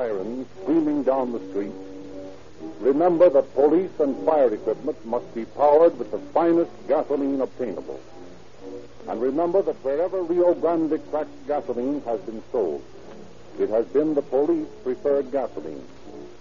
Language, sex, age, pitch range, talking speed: English, male, 60-79, 120-175 Hz, 130 wpm